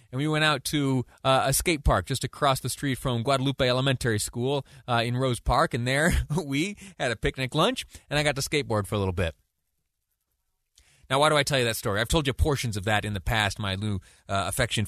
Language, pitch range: English, 105-135 Hz